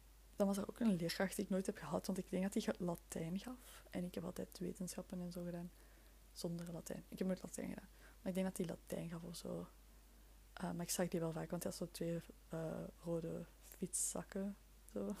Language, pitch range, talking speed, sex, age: Dutch, 170-190 Hz, 225 wpm, female, 20-39